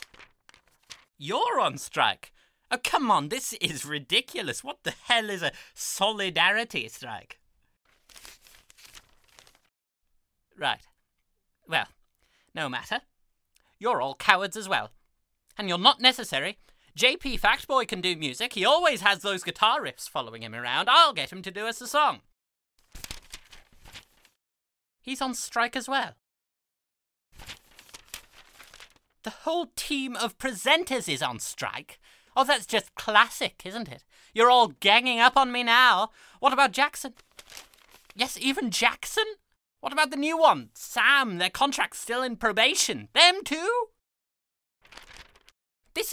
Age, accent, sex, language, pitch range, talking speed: 30-49, British, male, English, 220-295 Hz, 125 wpm